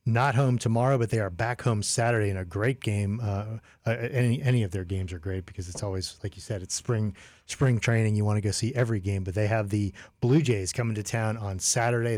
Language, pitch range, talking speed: English, 100-115 Hz, 240 wpm